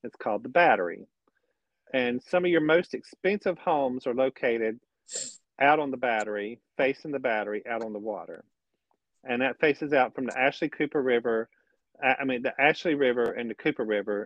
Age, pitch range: 40-59, 120-150 Hz